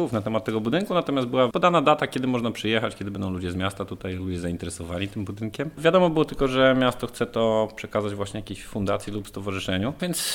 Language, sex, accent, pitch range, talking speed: Polish, male, native, 95-110 Hz, 205 wpm